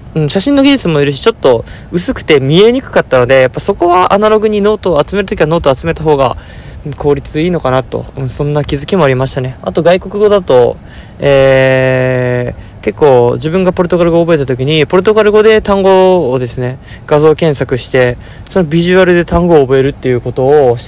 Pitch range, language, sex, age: 125-175 Hz, Japanese, male, 20-39